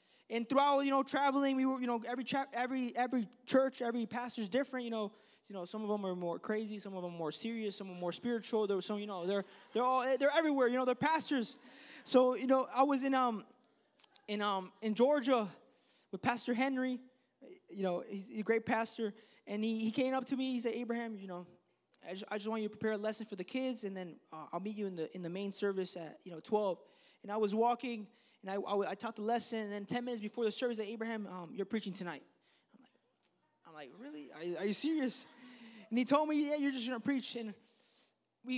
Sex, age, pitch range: male, 20-39, 210-260 Hz